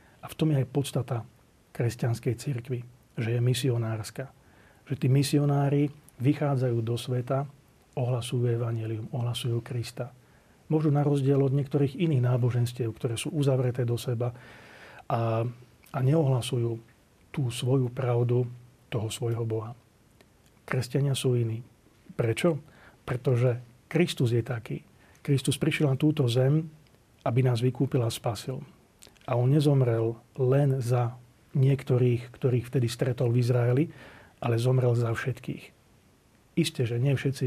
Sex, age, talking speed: male, 40-59, 125 wpm